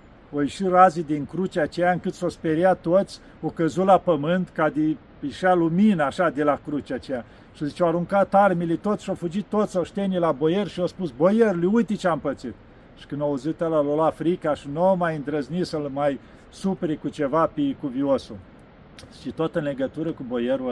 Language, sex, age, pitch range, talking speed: Romanian, male, 50-69, 150-185 Hz, 205 wpm